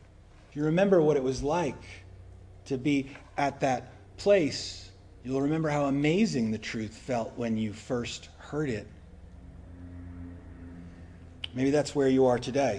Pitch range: 110-185 Hz